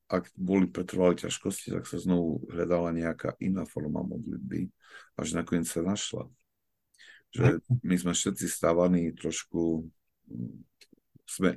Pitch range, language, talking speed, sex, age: 80-90 Hz, Slovak, 115 wpm, male, 50-69